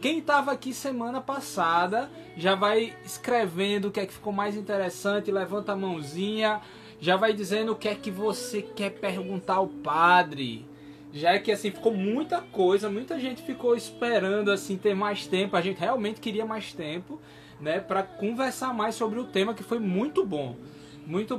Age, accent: 20-39, Brazilian